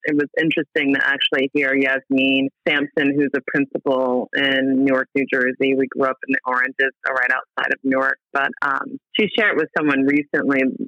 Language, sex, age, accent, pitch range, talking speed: English, female, 30-49, American, 135-160 Hz, 175 wpm